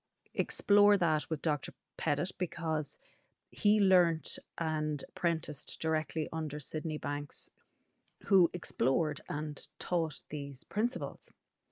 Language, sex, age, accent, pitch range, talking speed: English, female, 30-49, Irish, 155-185 Hz, 100 wpm